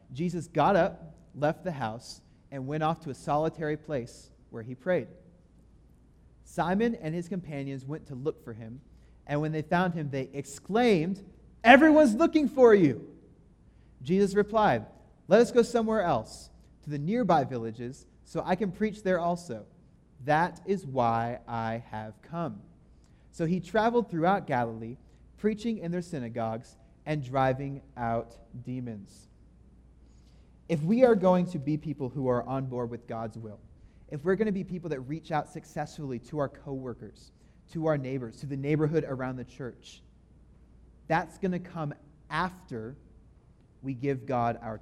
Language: English